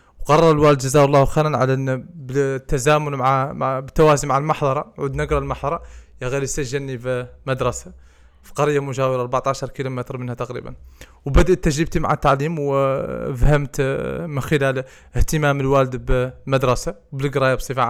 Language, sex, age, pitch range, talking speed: Arabic, male, 20-39, 130-150 Hz, 125 wpm